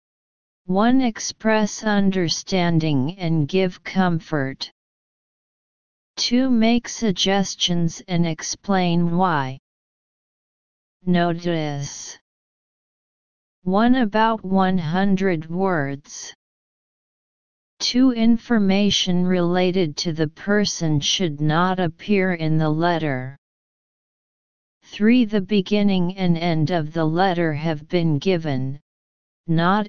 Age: 40-59